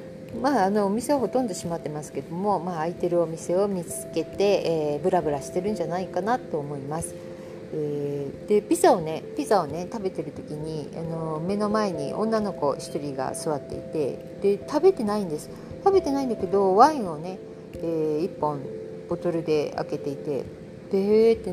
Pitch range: 165-215 Hz